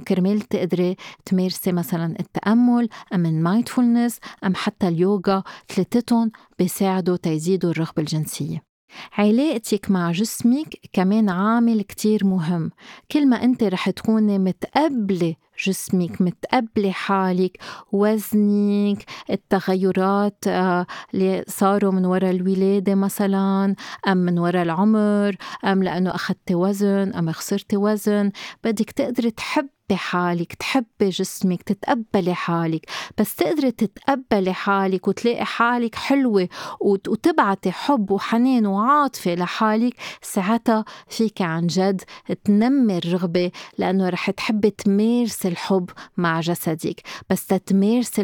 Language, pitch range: Arabic, 180-220 Hz